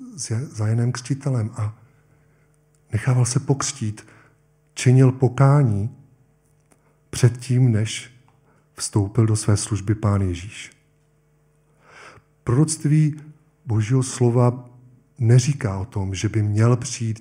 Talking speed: 85 wpm